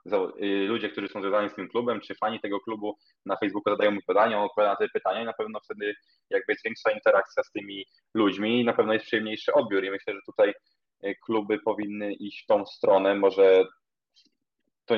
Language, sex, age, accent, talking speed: Polish, male, 20-39, native, 195 wpm